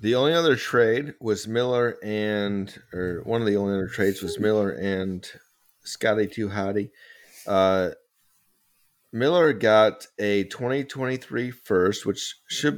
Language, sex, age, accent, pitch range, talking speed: English, male, 40-59, American, 100-130 Hz, 125 wpm